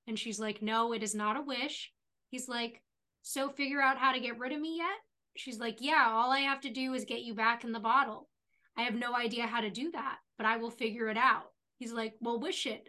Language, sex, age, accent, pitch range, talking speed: English, female, 10-29, American, 230-295 Hz, 255 wpm